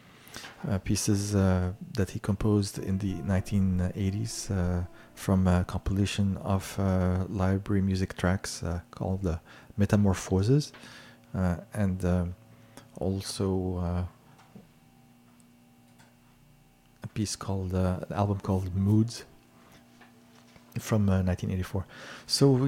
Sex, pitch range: male, 90-105 Hz